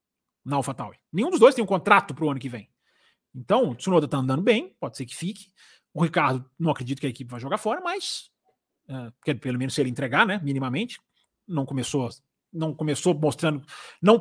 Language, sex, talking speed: Portuguese, male, 205 wpm